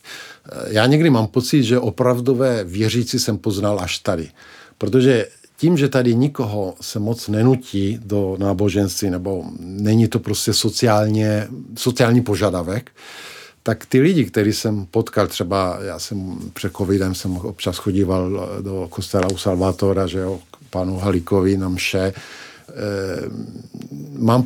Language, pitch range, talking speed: Czech, 100-125 Hz, 130 wpm